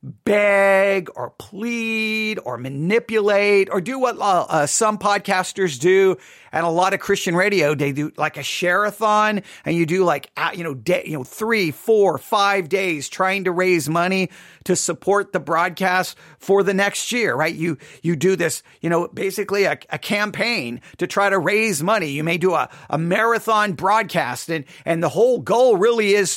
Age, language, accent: 40-59, English, American